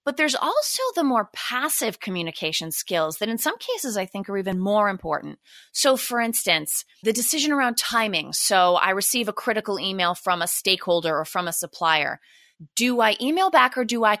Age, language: 30-49, English